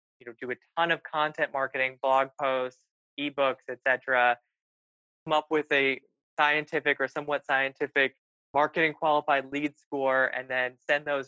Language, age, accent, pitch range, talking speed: English, 20-39, American, 125-145 Hz, 155 wpm